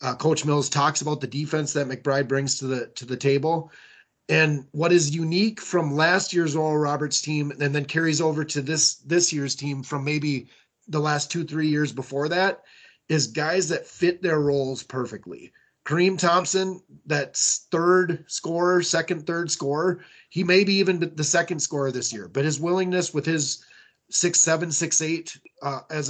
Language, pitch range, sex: English, 145-170 Hz, male